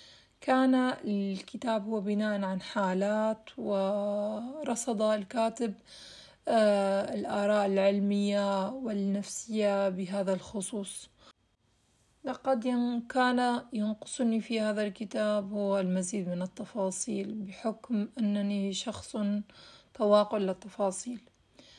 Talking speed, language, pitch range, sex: 80 wpm, Arabic, 200-230 Hz, female